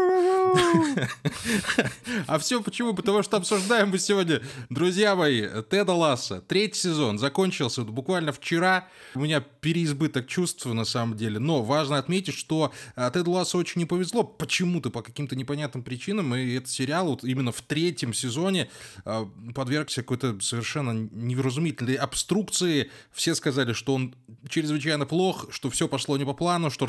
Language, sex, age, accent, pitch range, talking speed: Russian, male, 20-39, native, 130-170 Hz, 145 wpm